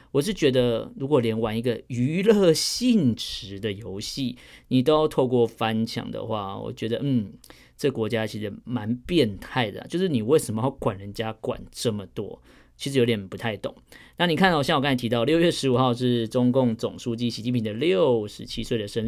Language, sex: Chinese, male